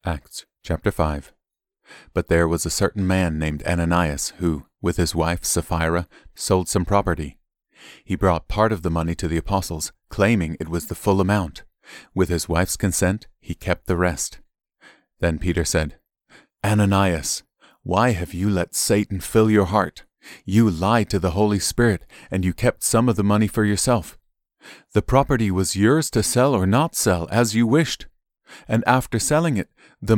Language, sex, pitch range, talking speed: English, male, 85-105 Hz, 170 wpm